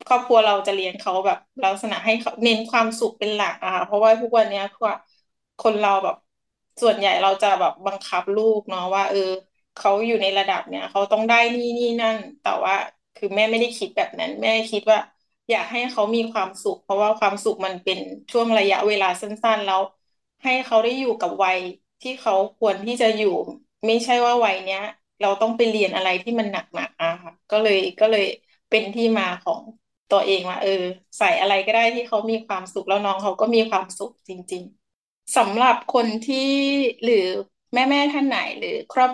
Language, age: Thai, 20-39